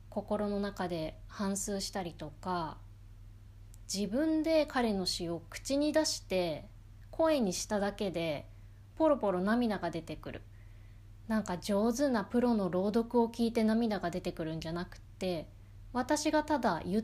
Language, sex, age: Japanese, female, 20-39